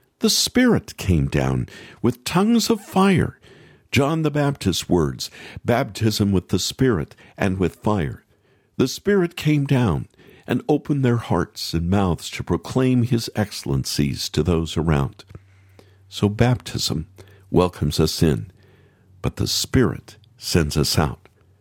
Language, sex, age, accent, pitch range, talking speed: English, male, 50-69, American, 90-130 Hz, 130 wpm